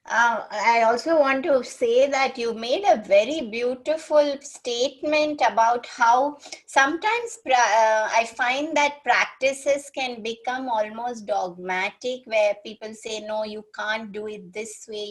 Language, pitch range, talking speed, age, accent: English, 205-255 Hz, 140 wpm, 20-39, Indian